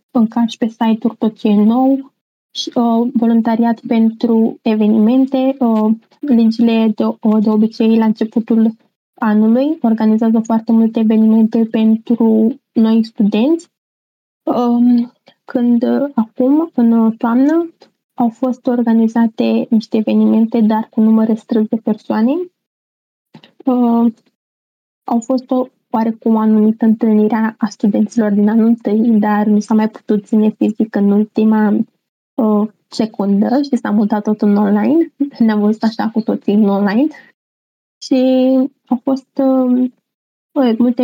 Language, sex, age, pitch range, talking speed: Romanian, female, 20-39, 220-250 Hz, 125 wpm